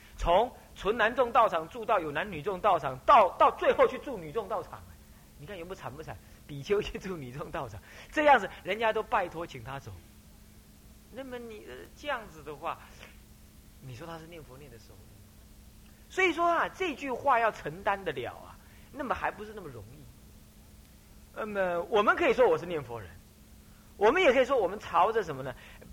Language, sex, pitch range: Chinese, male, 150-240 Hz